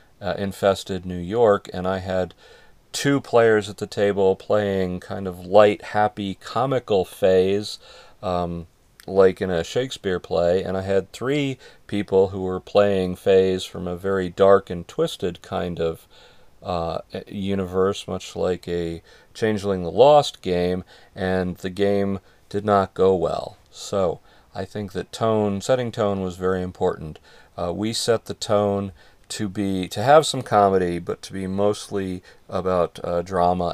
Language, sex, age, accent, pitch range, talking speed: English, male, 40-59, American, 95-105 Hz, 150 wpm